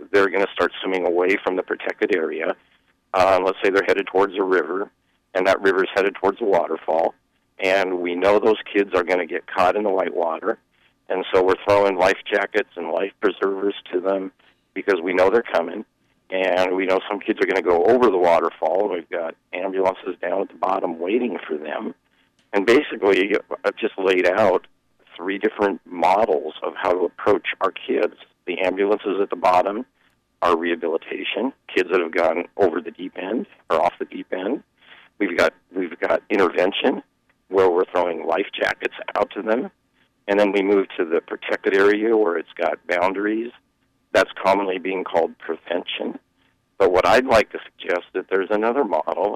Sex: male